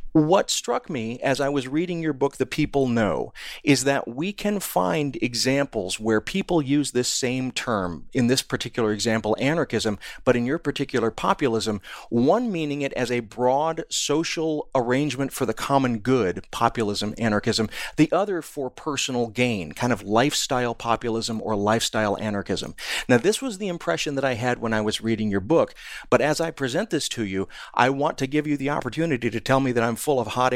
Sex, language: male, English